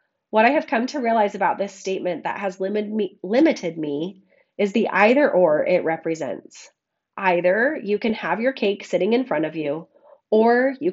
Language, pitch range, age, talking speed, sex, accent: English, 185-265 Hz, 30-49, 180 wpm, female, American